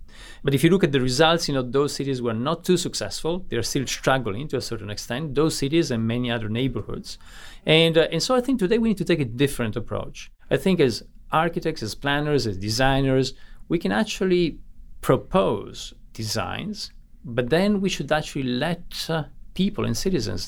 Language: English